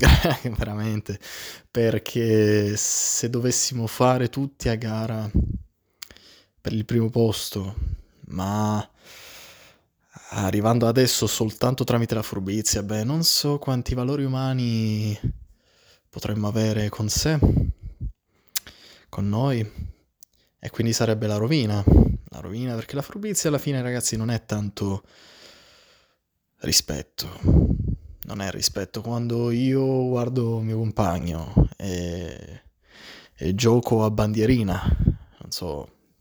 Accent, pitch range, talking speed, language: native, 100-120 Hz, 105 wpm, Italian